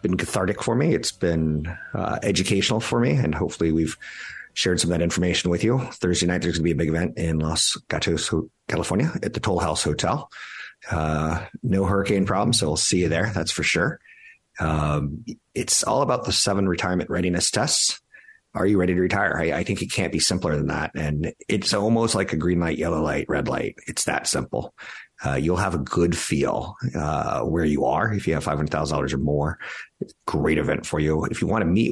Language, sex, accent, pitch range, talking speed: English, male, American, 75-90 Hz, 210 wpm